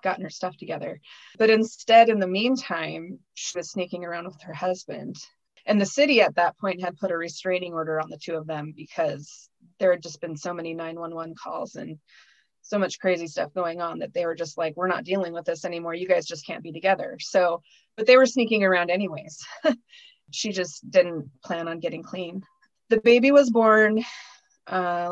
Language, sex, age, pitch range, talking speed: English, female, 20-39, 170-210 Hz, 200 wpm